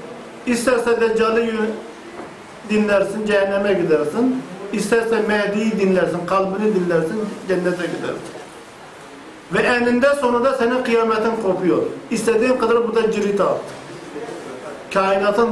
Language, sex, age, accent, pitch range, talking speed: Turkish, male, 50-69, native, 190-235 Hz, 100 wpm